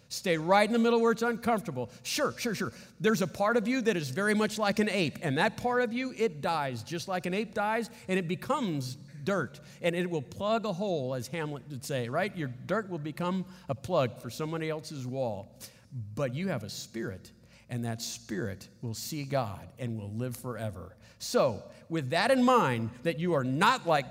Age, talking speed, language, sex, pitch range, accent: 50-69, 210 wpm, English, male, 135-220 Hz, American